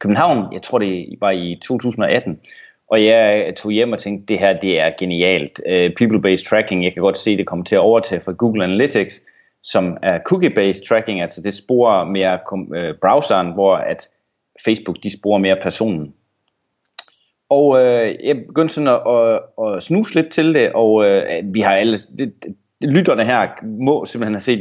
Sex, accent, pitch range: male, native, 95-125 Hz